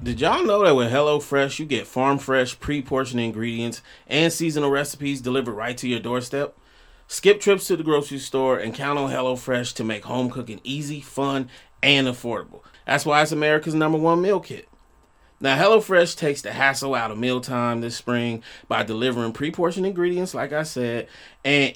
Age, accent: 30-49, American